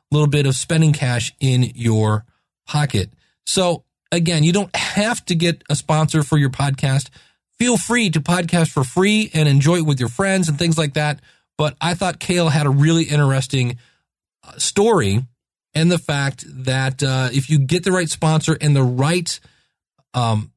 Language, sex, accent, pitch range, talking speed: English, male, American, 135-175 Hz, 180 wpm